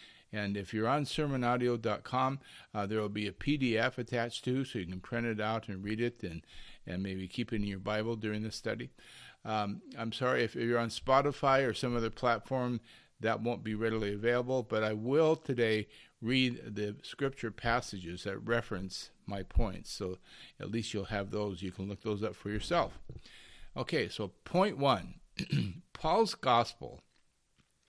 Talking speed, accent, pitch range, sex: 170 wpm, American, 100-125 Hz, male